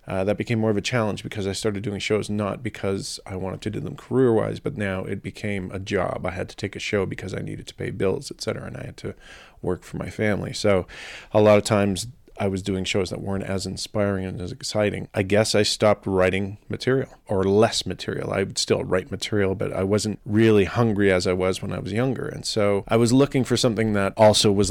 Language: English